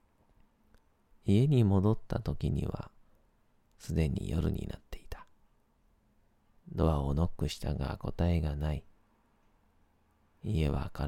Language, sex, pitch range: Japanese, male, 80-100 Hz